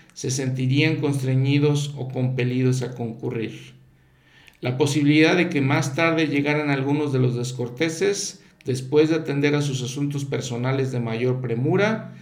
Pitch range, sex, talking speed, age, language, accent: 125-145 Hz, male, 135 wpm, 50-69, Spanish, Mexican